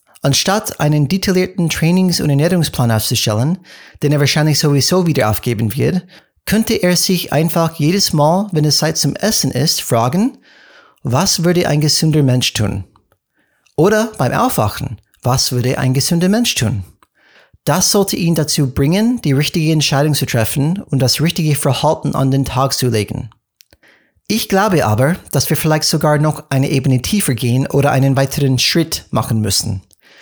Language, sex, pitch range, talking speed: German, male, 130-170 Hz, 155 wpm